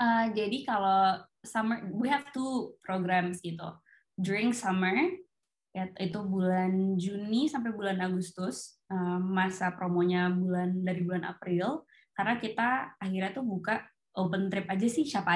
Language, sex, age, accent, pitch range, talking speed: Indonesian, female, 20-39, native, 185-220 Hz, 135 wpm